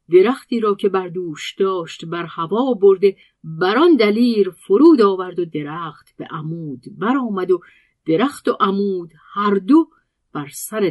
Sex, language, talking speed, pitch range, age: female, Persian, 150 wpm, 155-200 Hz, 50-69